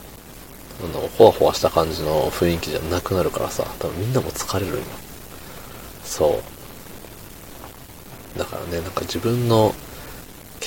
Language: Japanese